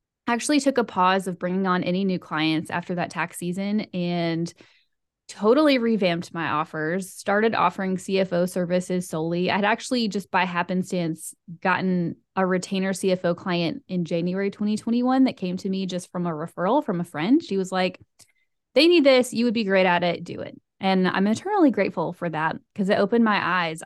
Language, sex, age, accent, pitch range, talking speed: English, female, 10-29, American, 180-215 Hz, 185 wpm